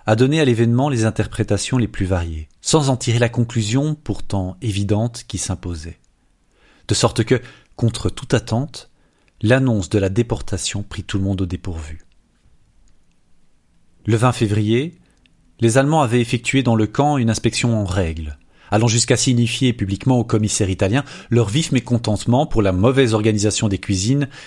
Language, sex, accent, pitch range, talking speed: French, male, French, 95-120 Hz, 155 wpm